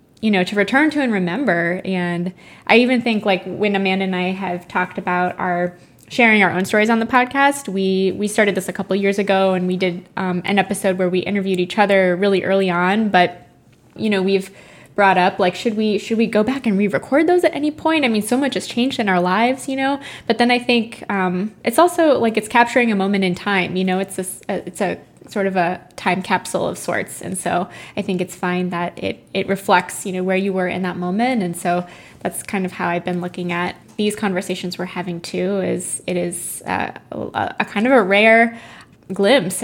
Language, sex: English, female